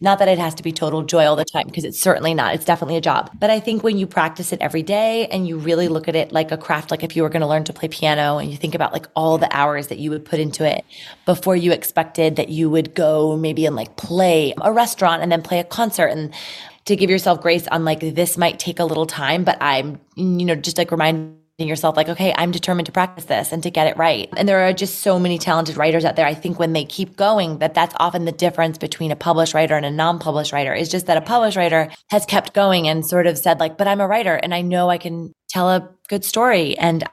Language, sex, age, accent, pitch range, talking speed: English, female, 20-39, American, 155-185 Hz, 275 wpm